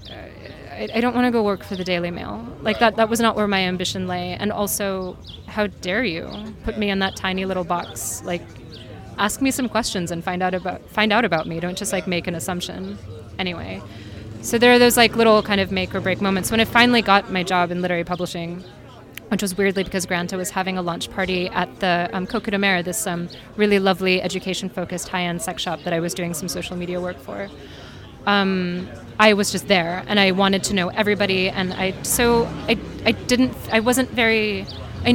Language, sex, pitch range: English, female, 180-225 Hz